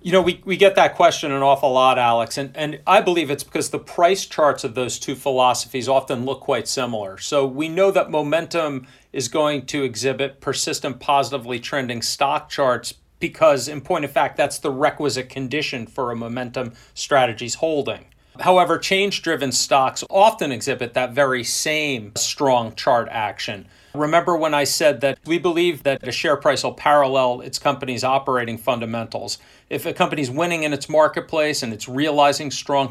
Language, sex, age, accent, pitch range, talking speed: English, male, 40-59, American, 125-150 Hz, 175 wpm